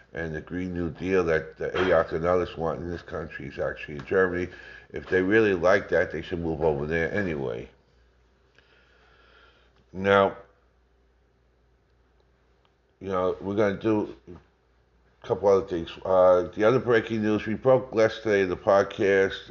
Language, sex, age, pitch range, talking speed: English, male, 50-69, 80-95 Hz, 150 wpm